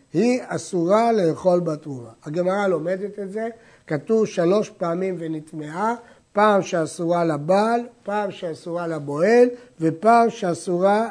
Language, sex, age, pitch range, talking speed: Hebrew, male, 60-79, 160-225 Hz, 110 wpm